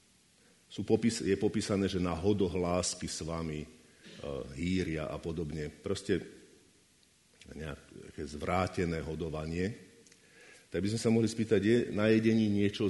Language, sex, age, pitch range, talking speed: Slovak, male, 50-69, 85-100 Hz, 110 wpm